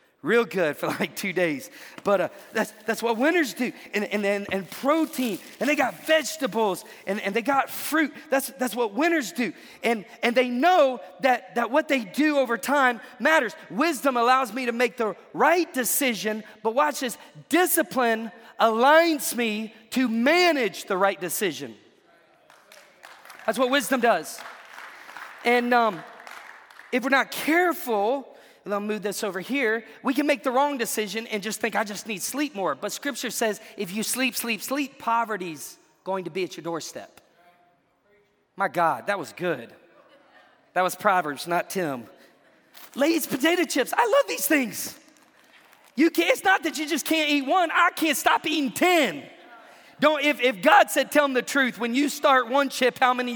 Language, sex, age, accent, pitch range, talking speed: English, male, 40-59, American, 210-285 Hz, 175 wpm